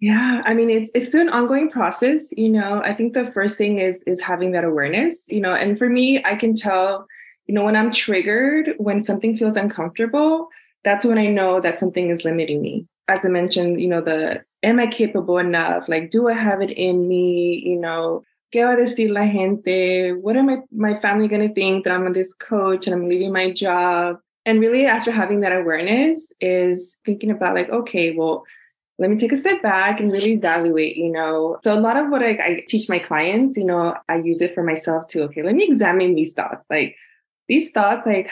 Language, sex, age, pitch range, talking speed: English, female, 20-39, 175-225 Hz, 220 wpm